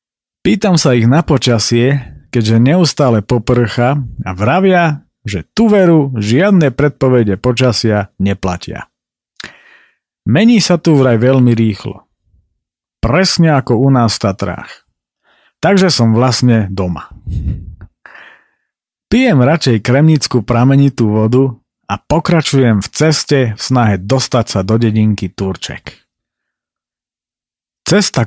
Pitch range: 110-140 Hz